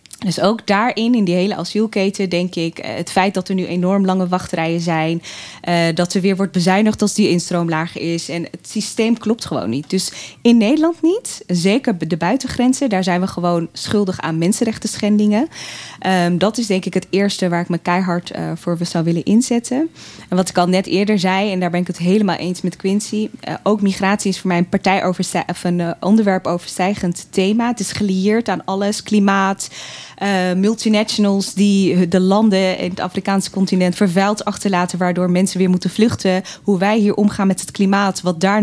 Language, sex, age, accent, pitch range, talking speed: Dutch, female, 20-39, Dutch, 180-205 Hz, 185 wpm